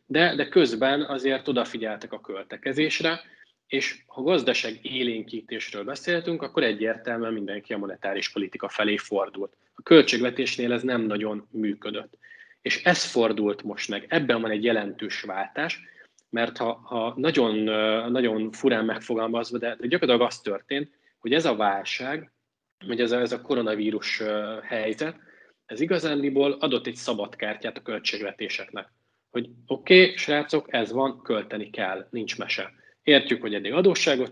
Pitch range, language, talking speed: 110-145 Hz, Hungarian, 140 wpm